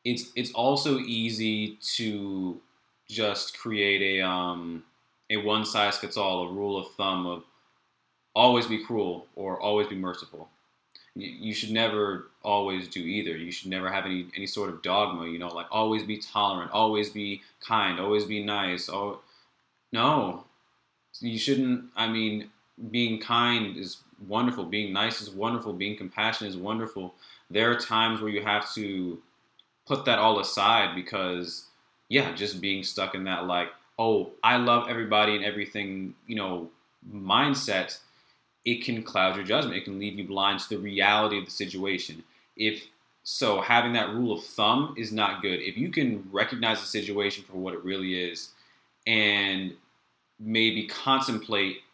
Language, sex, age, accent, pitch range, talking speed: English, male, 20-39, American, 95-110 Hz, 160 wpm